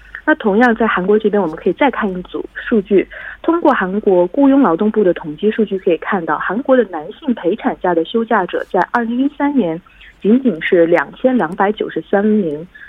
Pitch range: 175-260 Hz